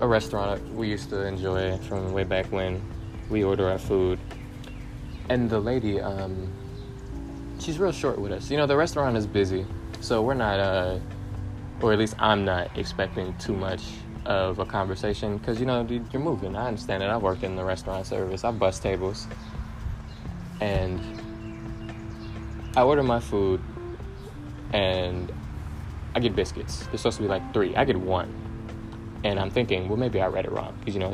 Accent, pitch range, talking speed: American, 95-120 Hz, 175 wpm